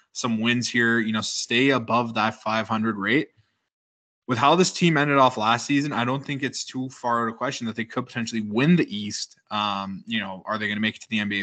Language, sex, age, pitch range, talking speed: English, male, 20-39, 105-120 Hz, 240 wpm